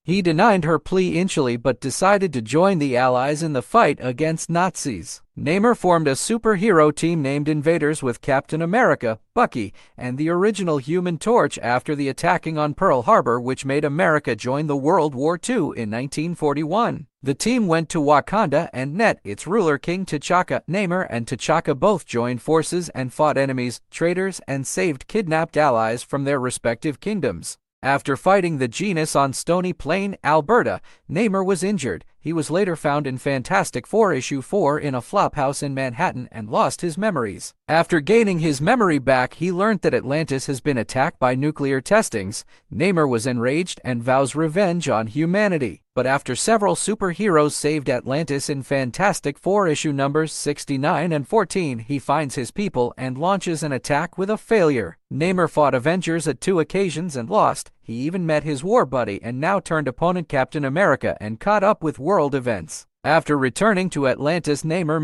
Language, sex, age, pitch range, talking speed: English, male, 40-59, 135-185 Hz, 170 wpm